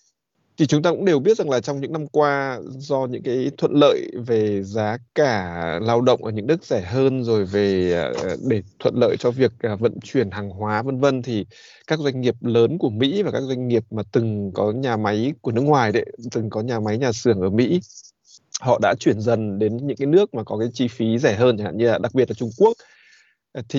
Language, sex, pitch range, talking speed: Vietnamese, male, 110-135 Hz, 235 wpm